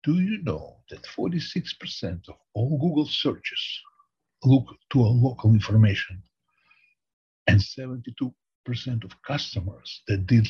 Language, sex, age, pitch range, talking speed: English, male, 60-79, 100-125 Hz, 115 wpm